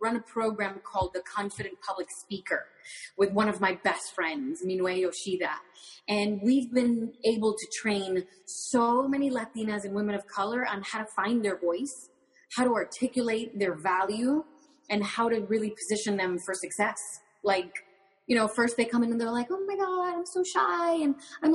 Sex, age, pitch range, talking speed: female, 30-49, 195-255 Hz, 185 wpm